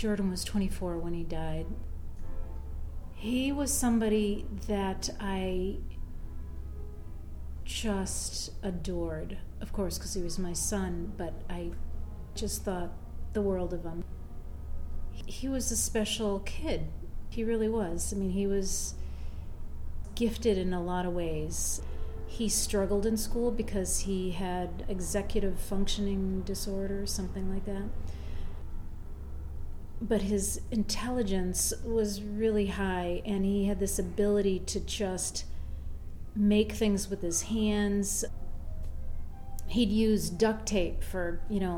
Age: 40-59